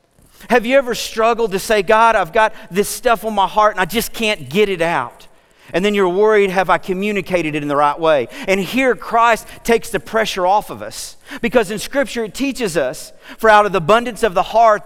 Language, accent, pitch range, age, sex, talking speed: English, American, 165-220 Hz, 40-59, male, 225 wpm